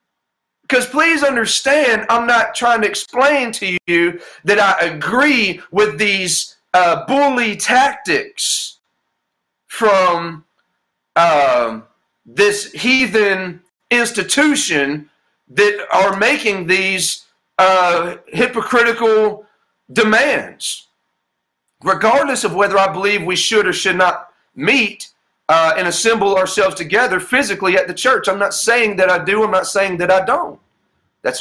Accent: American